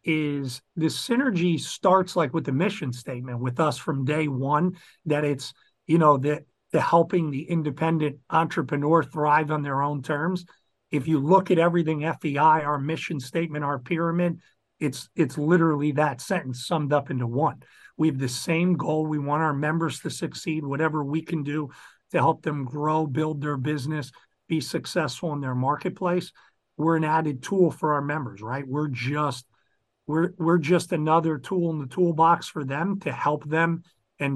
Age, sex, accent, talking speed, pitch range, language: 50-69, male, American, 175 wpm, 145-170 Hz, English